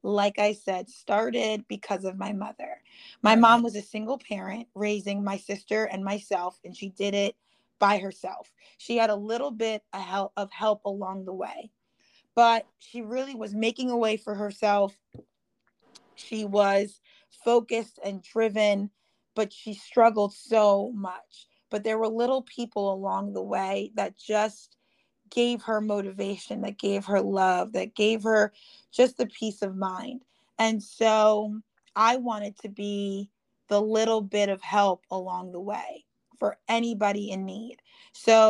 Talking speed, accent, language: 155 wpm, American, English